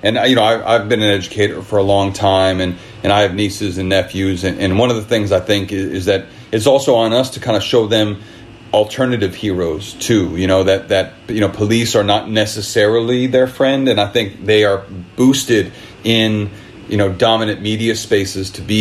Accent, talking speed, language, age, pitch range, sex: American, 215 wpm, English, 40-59, 100-115 Hz, male